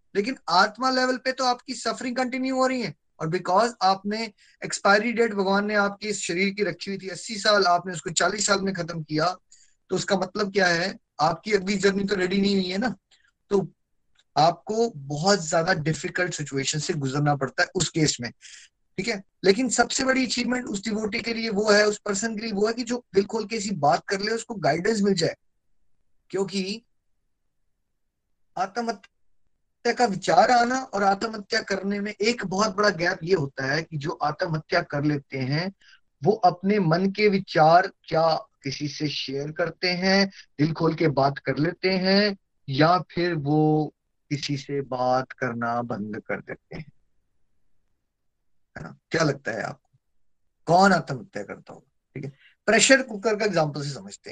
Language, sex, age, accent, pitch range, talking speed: Hindi, male, 20-39, native, 160-210 Hz, 175 wpm